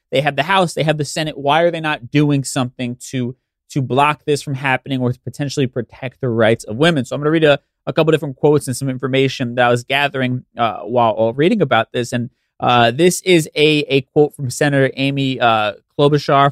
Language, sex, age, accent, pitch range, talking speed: English, male, 30-49, American, 130-155 Hz, 225 wpm